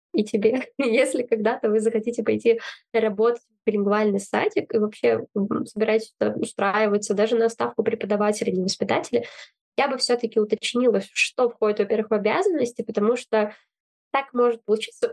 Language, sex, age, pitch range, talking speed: Russian, female, 10-29, 215-250 Hz, 145 wpm